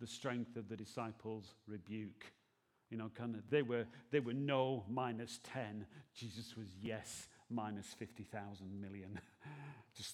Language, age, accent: English, 40-59, British